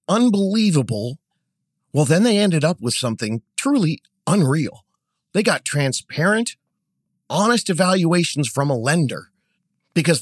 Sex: male